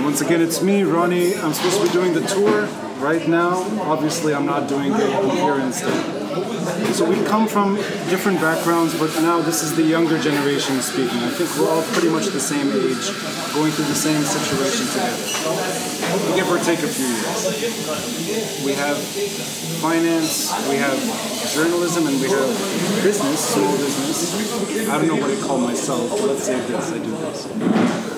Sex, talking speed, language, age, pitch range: male, 175 wpm, English, 30-49, 150-190 Hz